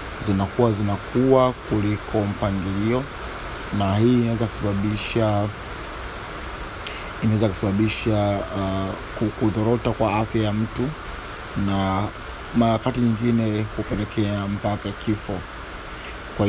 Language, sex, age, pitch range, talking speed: Swahili, male, 30-49, 100-115 Hz, 75 wpm